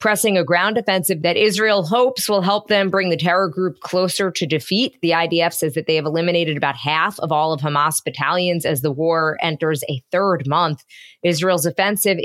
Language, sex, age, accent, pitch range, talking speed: English, female, 20-39, American, 170-210 Hz, 195 wpm